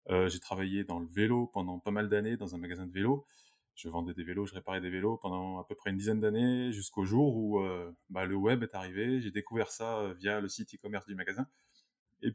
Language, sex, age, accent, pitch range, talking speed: French, male, 20-39, French, 95-110 Hz, 245 wpm